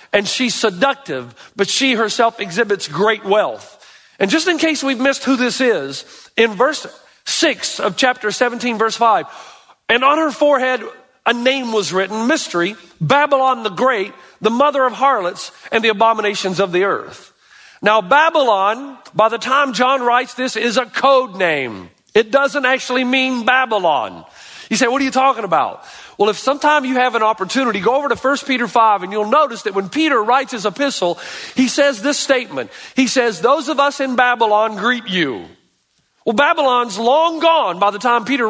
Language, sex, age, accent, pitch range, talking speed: English, male, 40-59, American, 220-275 Hz, 180 wpm